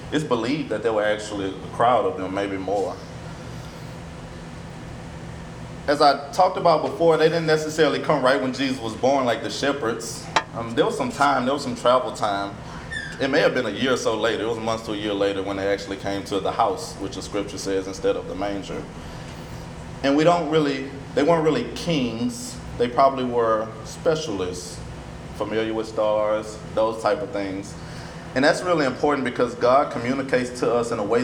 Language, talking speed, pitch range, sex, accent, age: English, 195 wpm, 110-150 Hz, male, American, 20-39